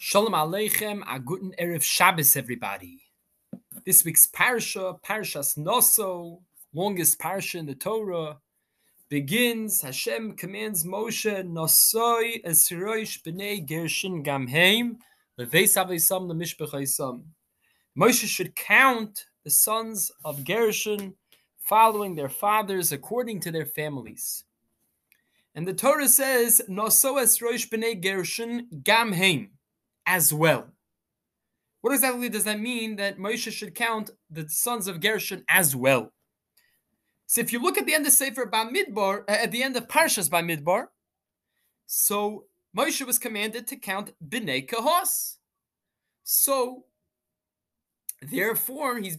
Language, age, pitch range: English, 20-39, 170-235 Hz